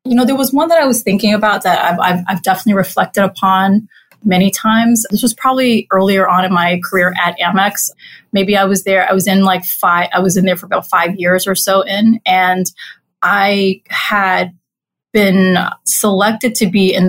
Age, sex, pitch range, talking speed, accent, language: 30-49, female, 185-210 Hz, 200 wpm, American, English